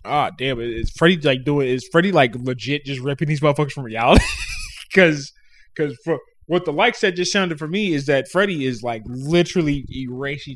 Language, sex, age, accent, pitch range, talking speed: English, male, 20-39, American, 100-145 Hz, 200 wpm